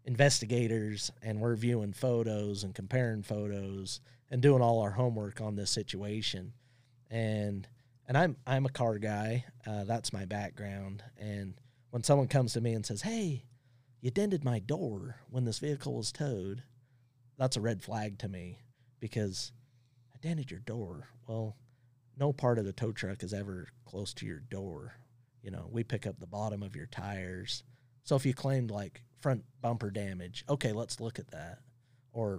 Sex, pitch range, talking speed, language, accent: male, 105-125 Hz, 170 wpm, English, American